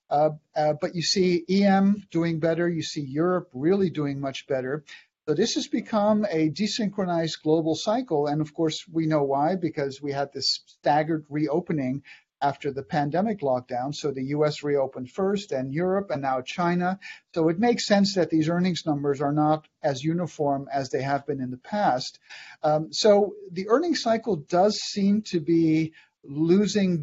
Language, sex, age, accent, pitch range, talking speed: English, male, 50-69, American, 150-185 Hz, 175 wpm